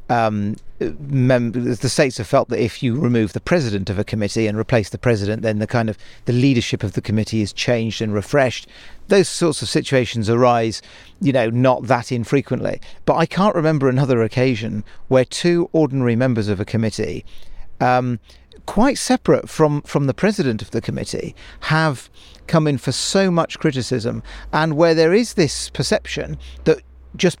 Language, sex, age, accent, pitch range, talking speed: English, male, 40-59, British, 110-140 Hz, 175 wpm